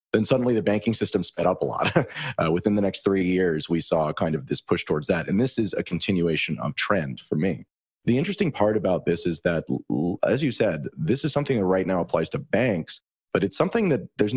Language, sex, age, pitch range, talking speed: English, male, 30-49, 85-110 Hz, 235 wpm